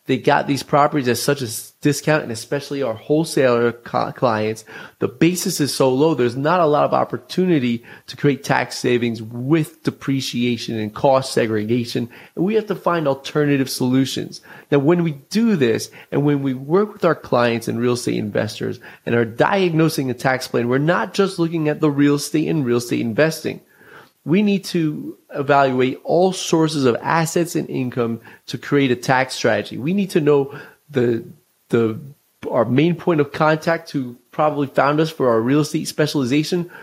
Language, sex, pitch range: English, male, 130-165 Hz